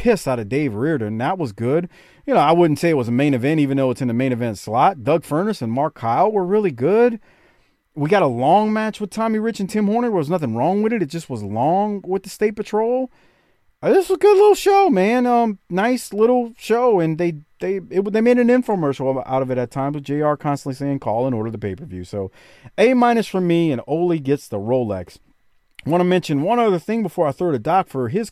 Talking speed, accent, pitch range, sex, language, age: 250 wpm, American, 120-200 Hz, male, English, 40-59